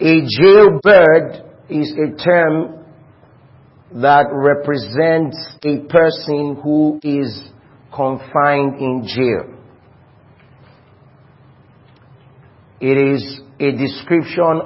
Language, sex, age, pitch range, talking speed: English, male, 40-59, 130-150 Hz, 75 wpm